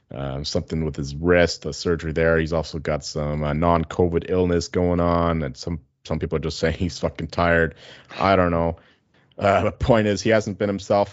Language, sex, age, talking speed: English, male, 30-49, 205 wpm